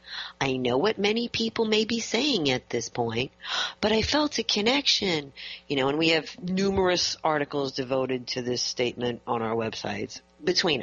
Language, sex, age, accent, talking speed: English, female, 40-59, American, 170 wpm